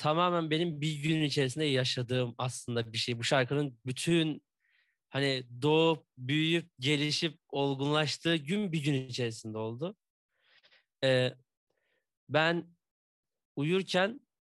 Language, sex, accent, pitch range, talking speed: Turkish, male, native, 130-165 Hz, 105 wpm